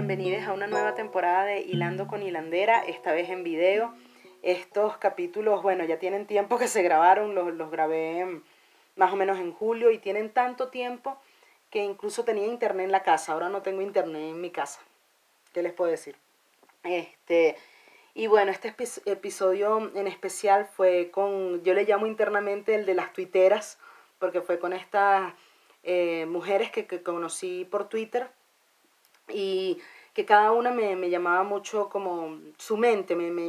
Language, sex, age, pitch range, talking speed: Spanish, female, 30-49, 180-215 Hz, 160 wpm